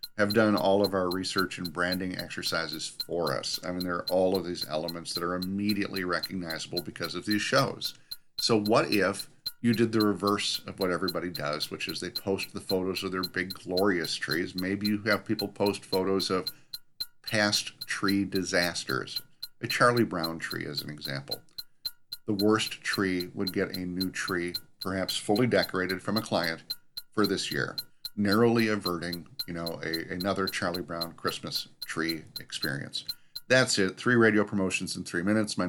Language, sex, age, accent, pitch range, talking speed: English, male, 50-69, American, 90-105 Hz, 170 wpm